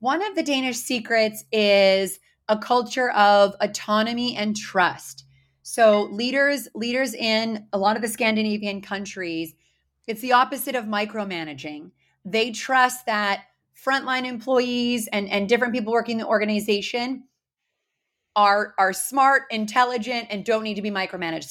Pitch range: 200-245 Hz